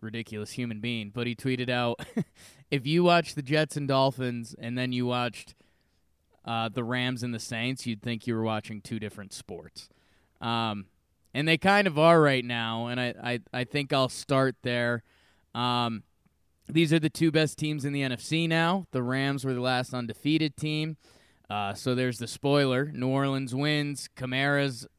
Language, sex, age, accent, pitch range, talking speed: English, male, 20-39, American, 115-140 Hz, 180 wpm